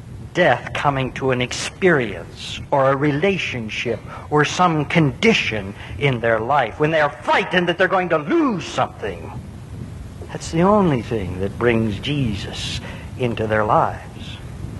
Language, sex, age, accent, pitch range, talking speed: English, male, 60-79, American, 120-180 Hz, 140 wpm